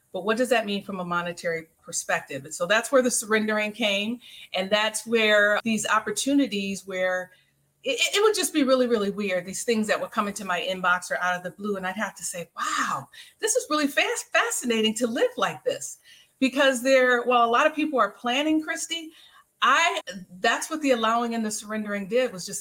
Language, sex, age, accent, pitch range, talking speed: English, female, 40-59, American, 180-245 Hz, 210 wpm